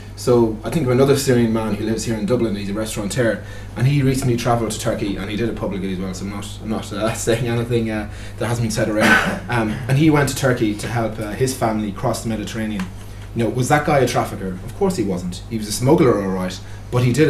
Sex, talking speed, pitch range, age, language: male, 260 wpm, 105-125 Hz, 30-49, English